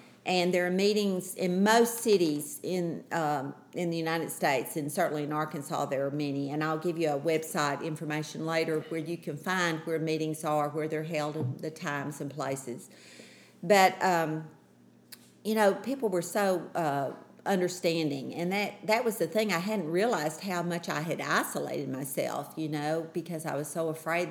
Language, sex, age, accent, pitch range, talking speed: English, female, 50-69, American, 150-180 Hz, 180 wpm